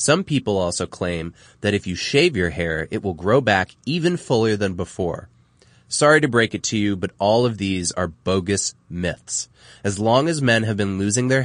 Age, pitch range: 20-39, 95-145 Hz